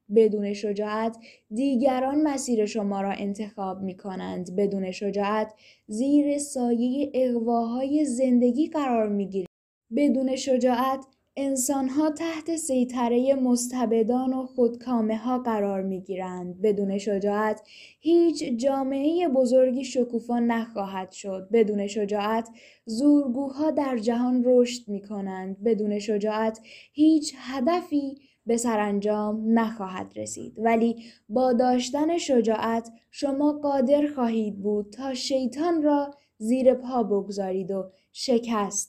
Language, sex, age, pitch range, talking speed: Persian, female, 10-29, 215-275 Hz, 100 wpm